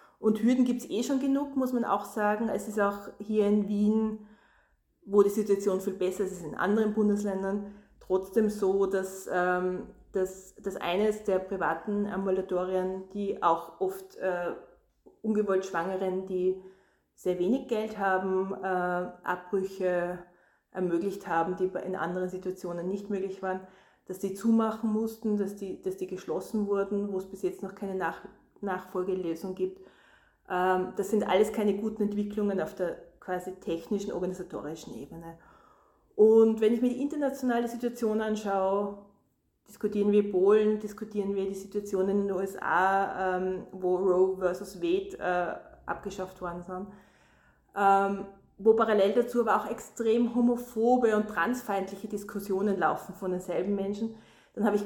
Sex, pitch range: female, 185-215 Hz